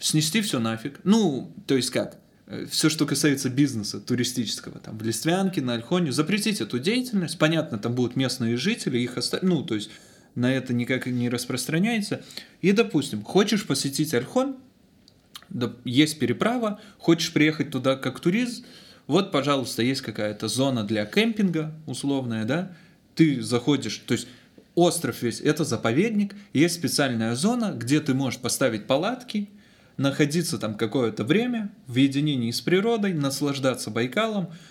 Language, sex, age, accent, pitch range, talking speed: Russian, male, 20-39, native, 120-170 Hz, 145 wpm